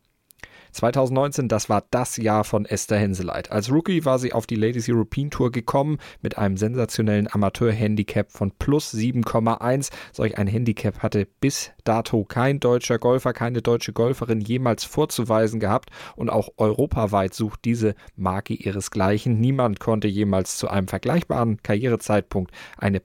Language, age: German, 40-59